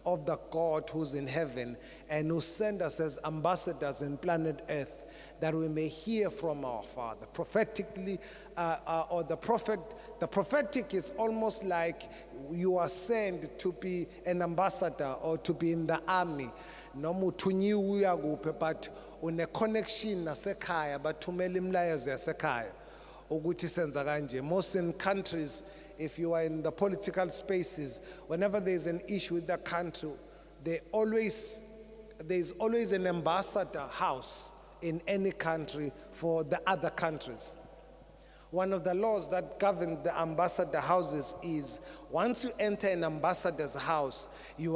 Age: 30-49